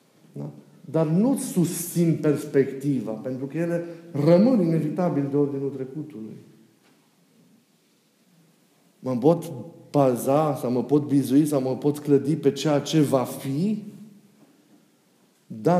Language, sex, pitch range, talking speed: Romanian, male, 125-175 Hz, 110 wpm